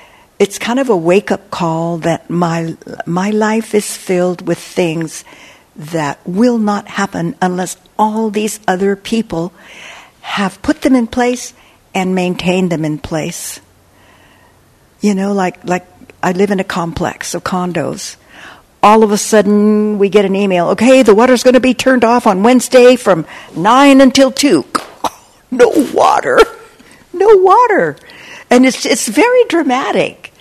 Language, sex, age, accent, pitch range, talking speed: English, female, 60-79, American, 180-235 Hz, 150 wpm